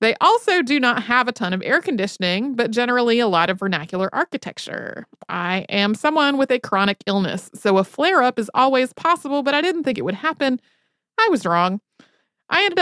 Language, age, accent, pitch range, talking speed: English, 30-49, American, 190-255 Hz, 195 wpm